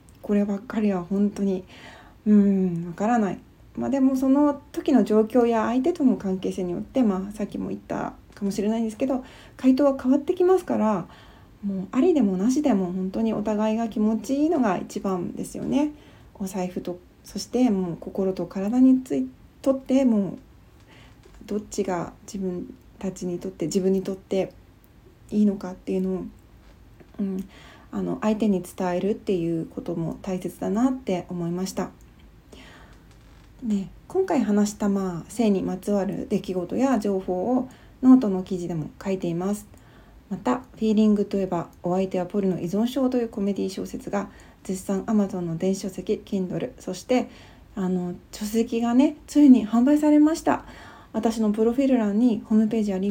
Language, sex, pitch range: Japanese, female, 185-240 Hz